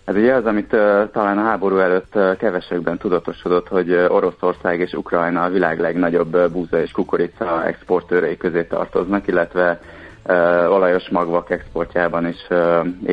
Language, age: Hungarian, 30-49